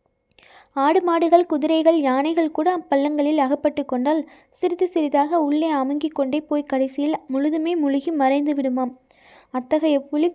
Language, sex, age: Tamil, female, 20-39